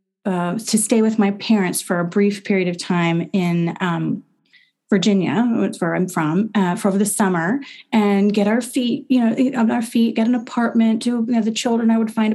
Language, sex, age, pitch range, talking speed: English, female, 30-49, 190-230 Hz, 220 wpm